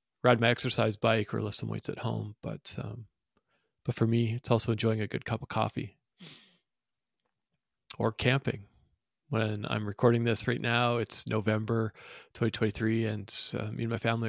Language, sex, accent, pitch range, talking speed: English, male, American, 105-120 Hz, 170 wpm